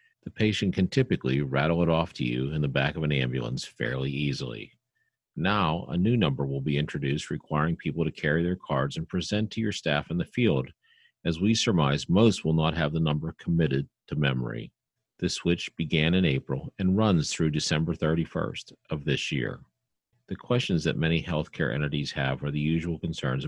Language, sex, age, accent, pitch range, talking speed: English, male, 50-69, American, 70-95 Hz, 190 wpm